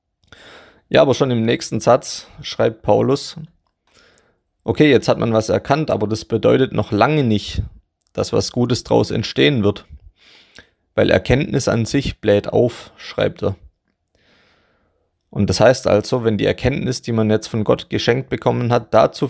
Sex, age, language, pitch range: male, 30-49, German, 100-125 Hz